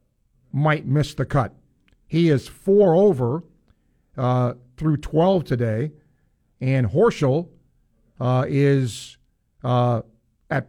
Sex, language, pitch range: male, English, 115-155 Hz